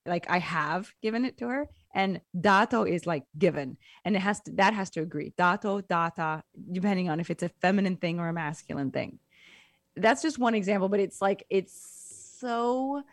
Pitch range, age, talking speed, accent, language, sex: 170-215 Hz, 20-39, 190 wpm, American, English, female